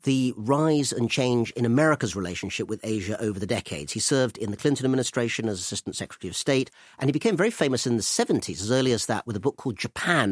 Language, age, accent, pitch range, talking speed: English, 40-59, British, 105-150 Hz, 235 wpm